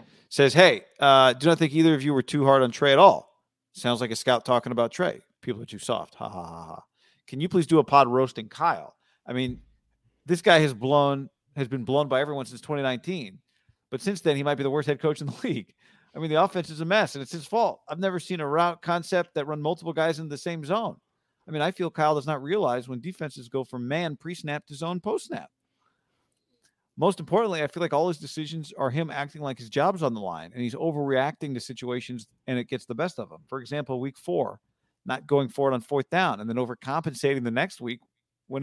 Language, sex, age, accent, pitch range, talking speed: English, male, 40-59, American, 135-175 Hz, 240 wpm